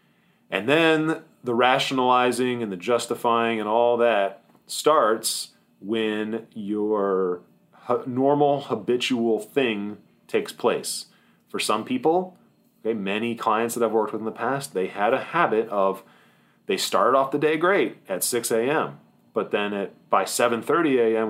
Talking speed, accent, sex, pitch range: 145 wpm, American, male, 100-120 Hz